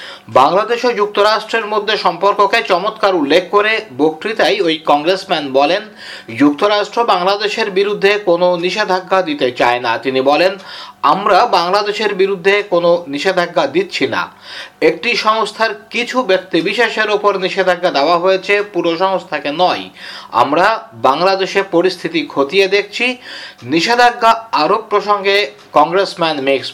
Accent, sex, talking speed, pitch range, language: native, male, 60 wpm, 170-210 Hz, Bengali